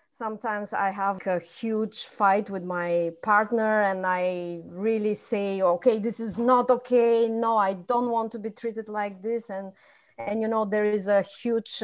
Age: 30-49